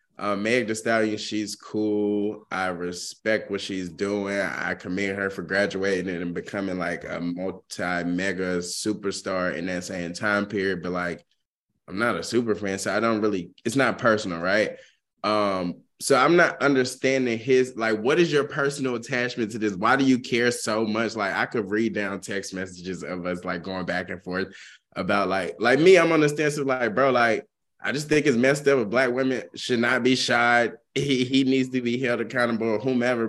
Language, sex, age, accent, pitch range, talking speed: English, male, 20-39, American, 95-125 Hz, 195 wpm